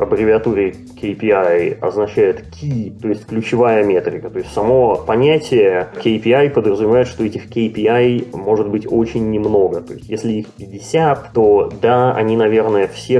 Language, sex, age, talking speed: Russian, male, 20-39, 140 wpm